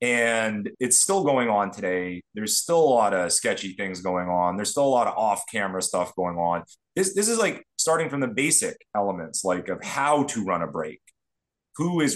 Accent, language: American, English